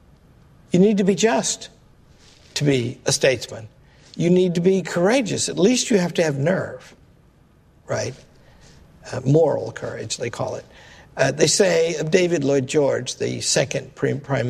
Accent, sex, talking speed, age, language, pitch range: American, male, 155 wpm, 60-79, English, 130-190 Hz